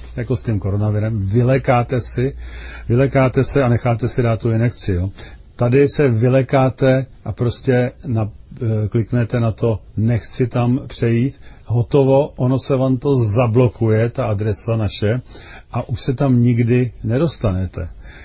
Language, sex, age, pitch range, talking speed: Czech, male, 40-59, 105-130 Hz, 140 wpm